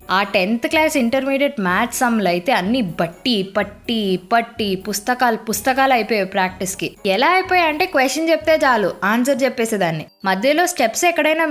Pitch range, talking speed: 180-265 Hz, 135 wpm